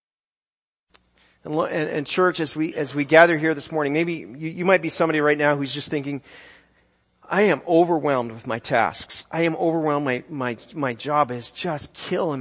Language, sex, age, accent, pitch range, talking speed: English, male, 40-59, American, 120-150 Hz, 185 wpm